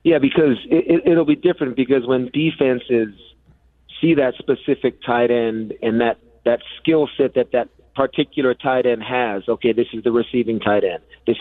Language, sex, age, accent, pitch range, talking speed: English, male, 40-59, American, 115-135 Hz, 180 wpm